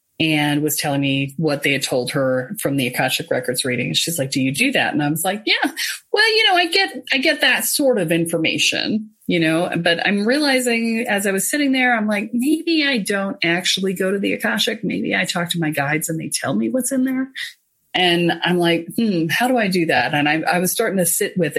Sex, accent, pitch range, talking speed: female, American, 170-260 Hz, 240 wpm